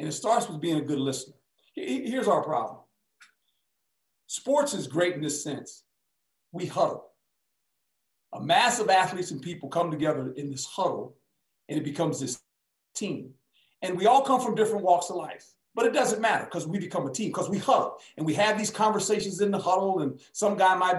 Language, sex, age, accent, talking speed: English, male, 50-69, American, 195 wpm